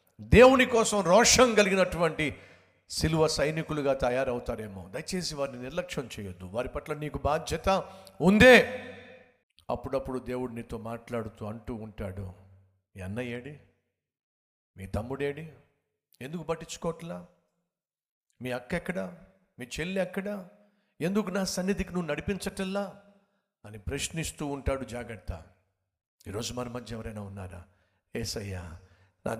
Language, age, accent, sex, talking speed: Telugu, 50-69, native, male, 100 wpm